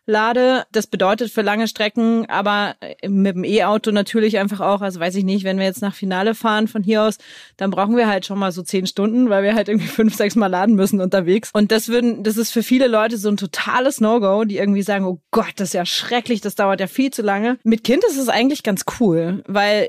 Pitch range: 190-220 Hz